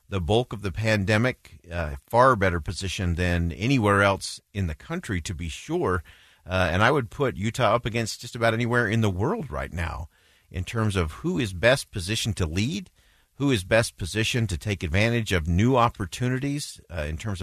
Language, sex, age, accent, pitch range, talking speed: English, male, 50-69, American, 90-120 Hz, 195 wpm